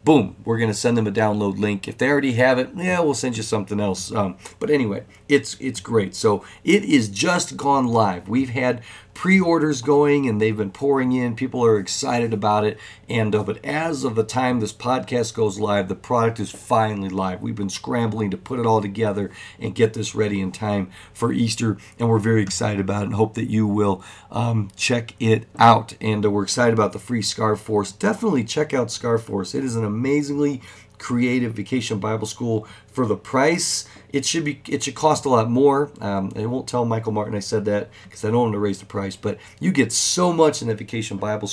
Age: 40-59